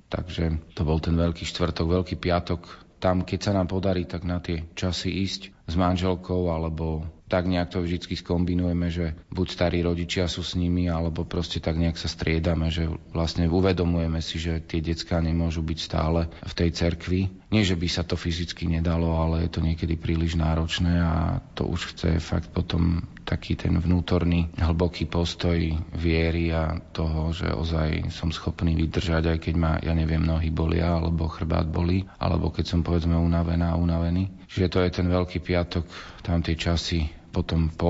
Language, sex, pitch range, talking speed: Slovak, male, 80-90 Hz, 175 wpm